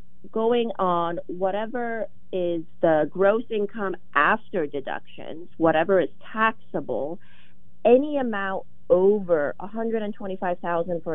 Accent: American